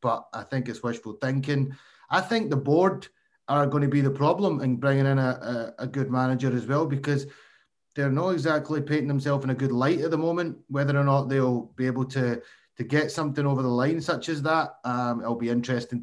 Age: 30-49